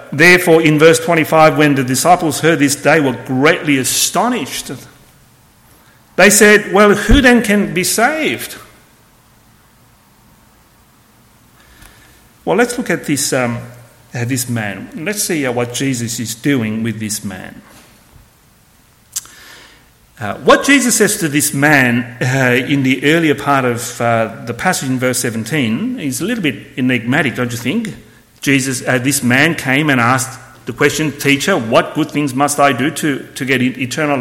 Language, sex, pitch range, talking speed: English, male, 120-155 Hz, 150 wpm